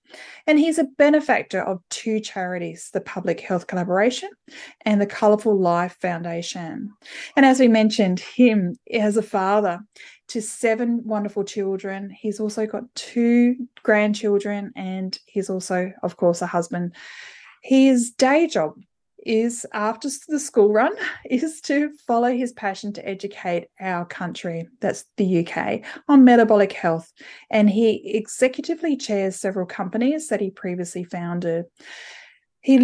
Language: English